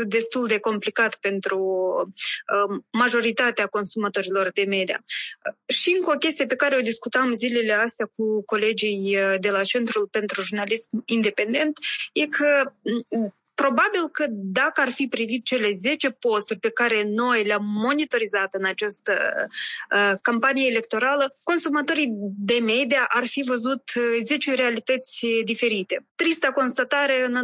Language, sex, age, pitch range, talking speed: Romanian, female, 20-39, 220-265 Hz, 130 wpm